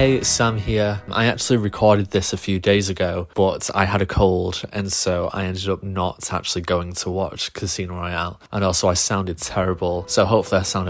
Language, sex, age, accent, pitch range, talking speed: English, male, 20-39, British, 90-105 Hz, 205 wpm